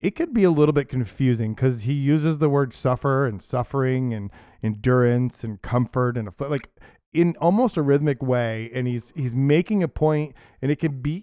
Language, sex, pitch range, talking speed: English, male, 120-155 Hz, 200 wpm